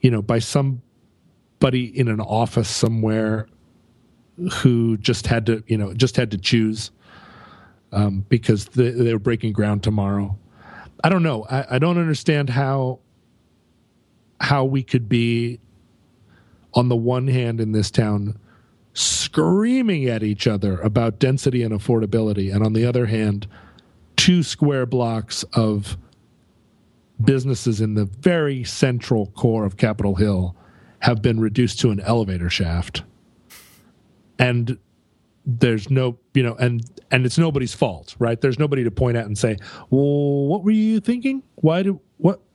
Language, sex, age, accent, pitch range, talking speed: English, male, 40-59, American, 110-140 Hz, 145 wpm